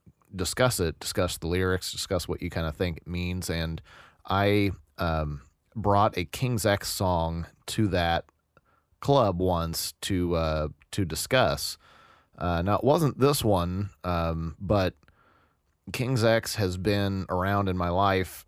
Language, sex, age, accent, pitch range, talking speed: English, male, 30-49, American, 80-100 Hz, 145 wpm